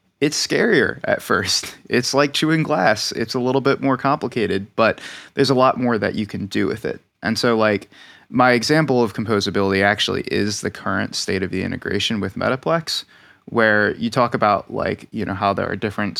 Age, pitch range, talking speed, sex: 20-39, 100-125 Hz, 195 wpm, male